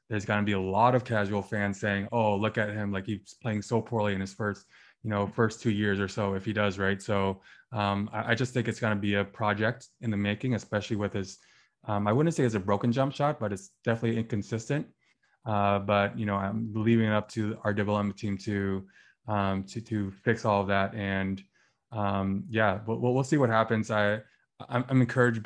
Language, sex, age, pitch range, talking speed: English, male, 20-39, 100-115 Hz, 230 wpm